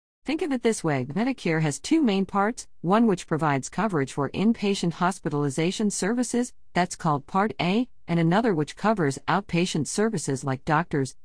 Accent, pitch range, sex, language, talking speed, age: American, 140-190 Hz, female, English, 160 wpm, 50-69